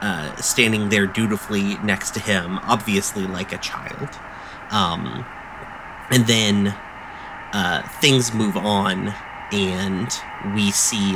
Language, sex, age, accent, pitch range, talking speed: English, male, 30-49, American, 100-115 Hz, 115 wpm